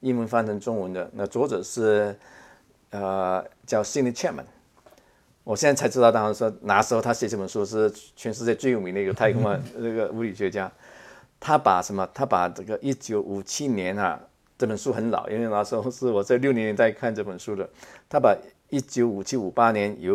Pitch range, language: 100-120 Hz, Chinese